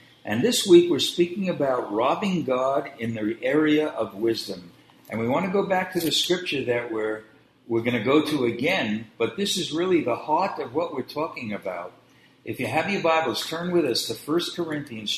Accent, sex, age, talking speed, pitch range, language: American, male, 60-79, 205 wpm, 125-180 Hz, English